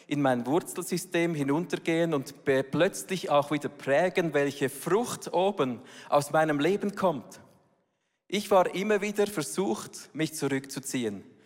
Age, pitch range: 40-59, 130-170 Hz